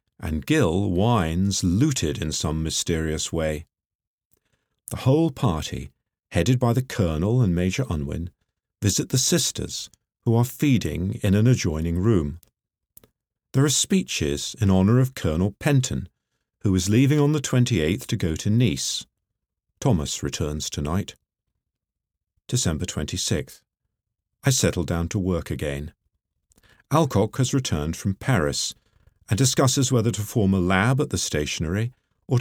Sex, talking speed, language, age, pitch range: male, 135 wpm, English, 50-69, 85-120 Hz